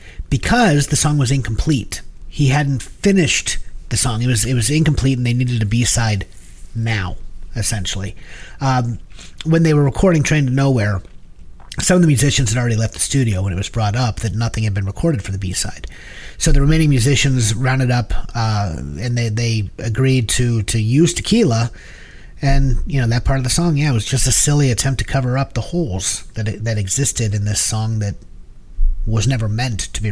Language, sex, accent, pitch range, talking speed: English, male, American, 105-140 Hz, 195 wpm